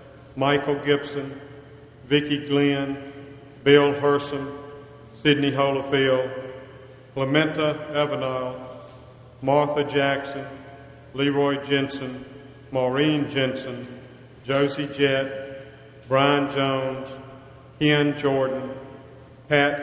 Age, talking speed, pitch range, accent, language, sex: 50-69, 70 wpm, 135-145 Hz, American, English, male